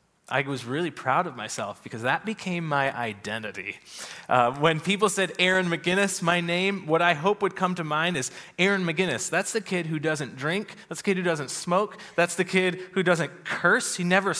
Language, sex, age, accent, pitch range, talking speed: English, male, 30-49, American, 140-195 Hz, 205 wpm